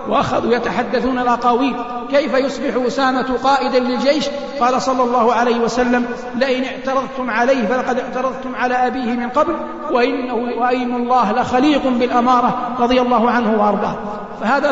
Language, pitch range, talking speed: Arabic, 240-265 Hz, 135 wpm